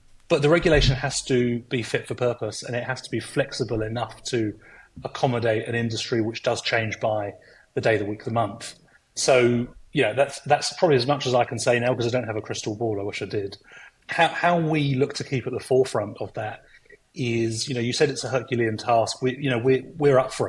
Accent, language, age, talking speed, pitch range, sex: British, English, 30-49, 235 wpm, 115-130 Hz, male